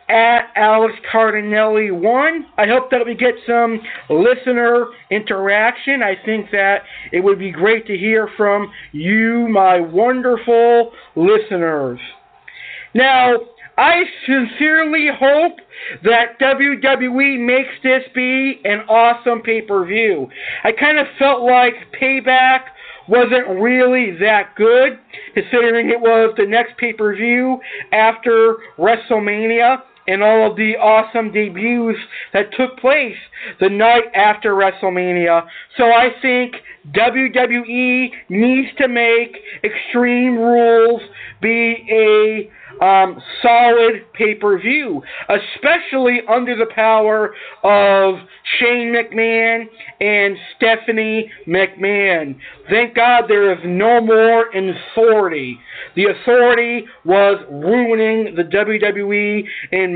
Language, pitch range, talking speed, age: English, 205-245 Hz, 115 wpm, 50-69